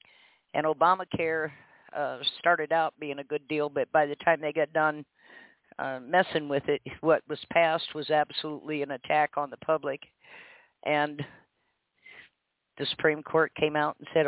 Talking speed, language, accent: 160 wpm, English, American